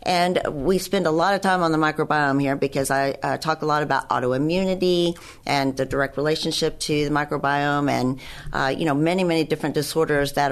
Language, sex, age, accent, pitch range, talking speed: English, female, 40-59, American, 140-165 Hz, 200 wpm